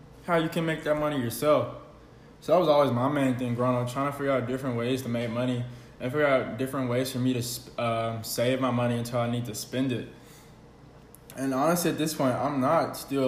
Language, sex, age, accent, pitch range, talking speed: English, male, 20-39, American, 115-135 Hz, 230 wpm